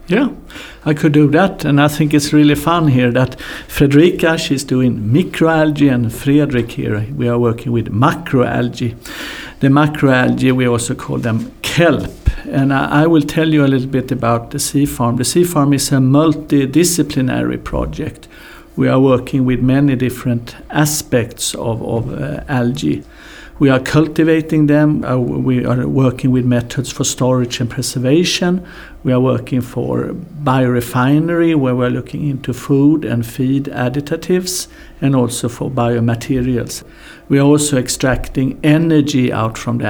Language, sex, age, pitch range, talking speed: English, male, 60-79, 125-150 Hz, 155 wpm